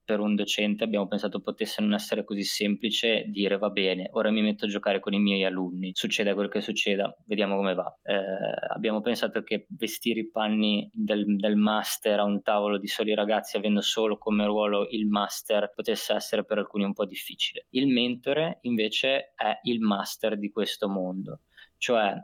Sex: male